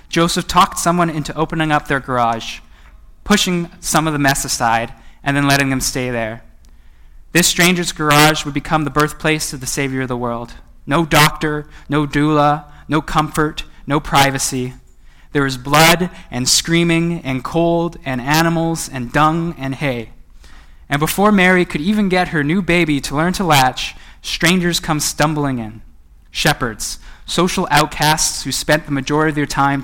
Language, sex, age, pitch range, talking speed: English, male, 20-39, 125-155 Hz, 165 wpm